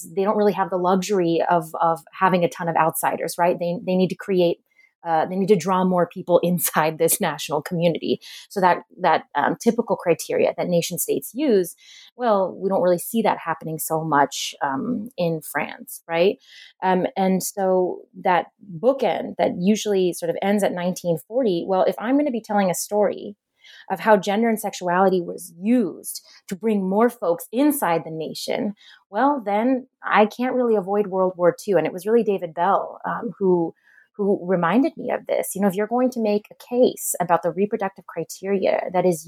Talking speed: 190 wpm